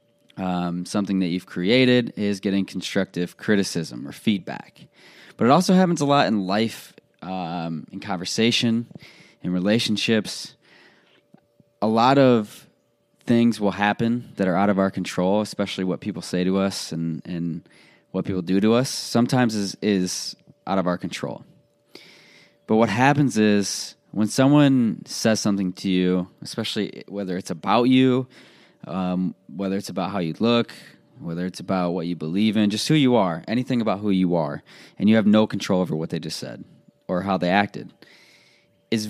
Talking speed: 165 wpm